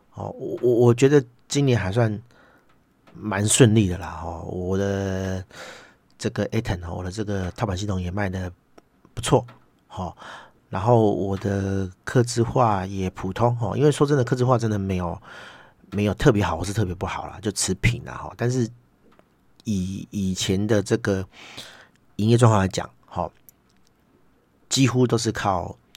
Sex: male